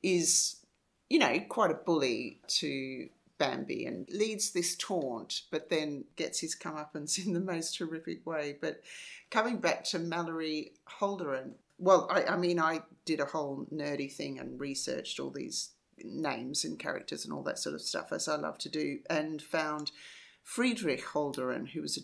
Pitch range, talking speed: 145-165 Hz, 170 wpm